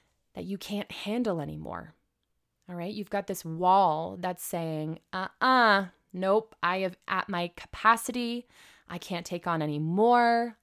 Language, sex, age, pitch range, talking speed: English, female, 20-39, 175-210 Hz, 145 wpm